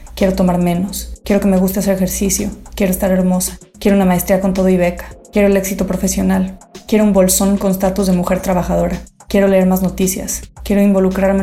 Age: 20-39